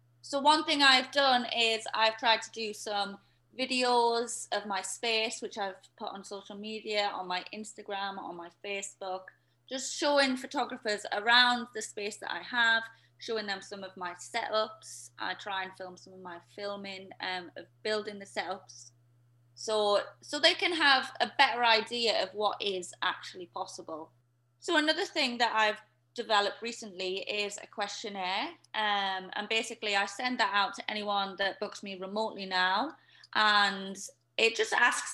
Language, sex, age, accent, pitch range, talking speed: English, female, 20-39, British, 185-230 Hz, 160 wpm